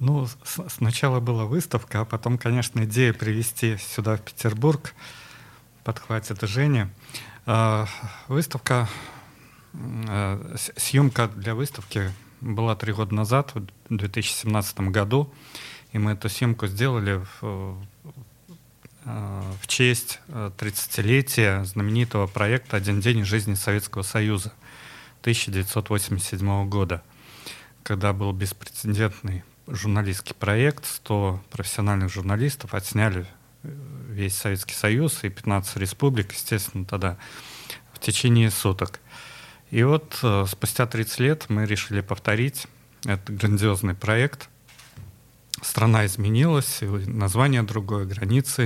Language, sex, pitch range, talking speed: Russian, male, 105-125 Hz, 95 wpm